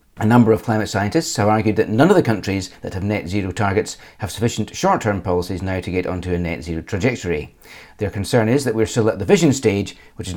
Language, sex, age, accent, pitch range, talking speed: English, male, 40-59, British, 95-120 Hz, 245 wpm